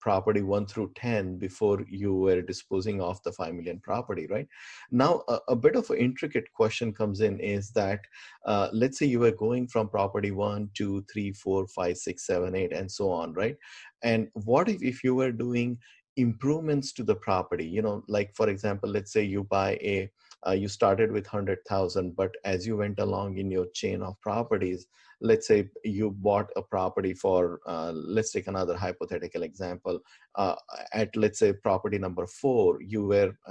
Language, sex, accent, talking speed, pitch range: English, male, Indian, 185 wpm, 95-110 Hz